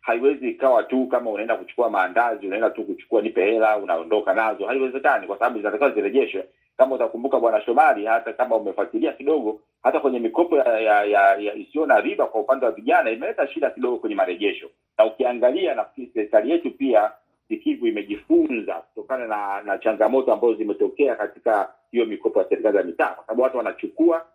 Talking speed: 170 wpm